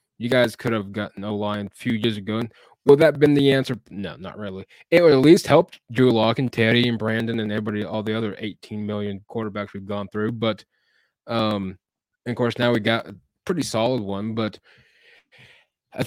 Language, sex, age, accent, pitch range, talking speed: English, male, 20-39, American, 105-125 Hz, 210 wpm